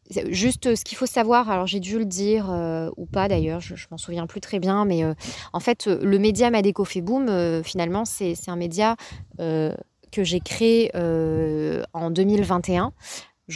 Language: French